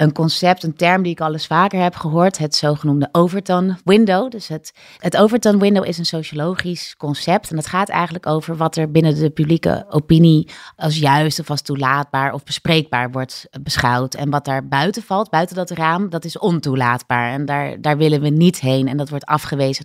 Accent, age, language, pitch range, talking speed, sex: Dutch, 30-49, Dutch, 150-190 Hz, 195 wpm, female